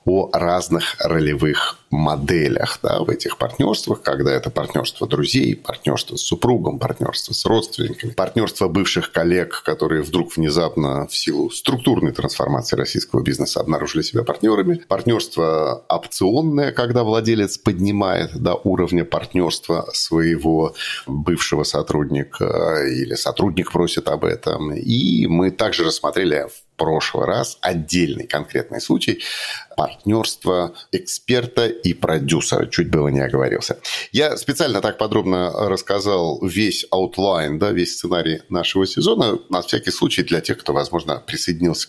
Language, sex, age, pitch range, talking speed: Russian, male, 40-59, 80-105 Hz, 120 wpm